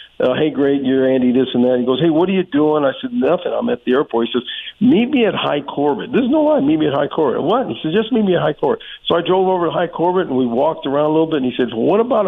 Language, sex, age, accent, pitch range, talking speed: English, male, 50-69, American, 130-190 Hz, 330 wpm